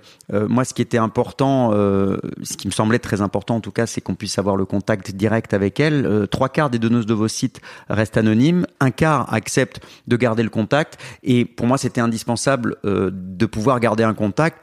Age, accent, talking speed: 30-49, French, 215 wpm